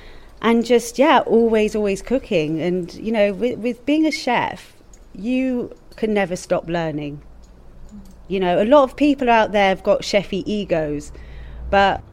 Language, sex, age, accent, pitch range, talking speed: English, female, 30-49, British, 170-230 Hz, 160 wpm